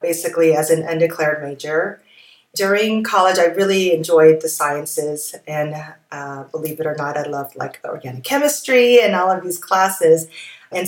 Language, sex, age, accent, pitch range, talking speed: English, female, 30-49, American, 150-170 Hz, 160 wpm